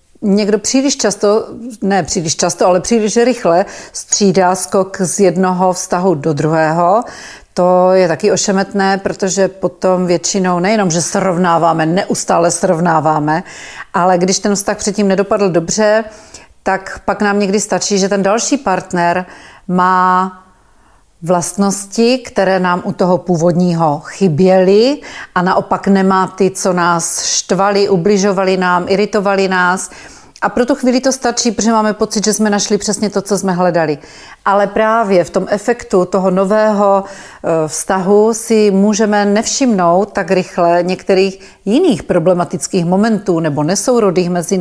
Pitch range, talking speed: 180-205 Hz, 135 wpm